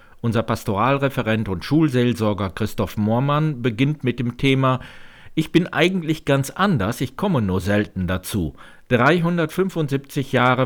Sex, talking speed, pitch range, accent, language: male, 125 wpm, 105-140 Hz, German, German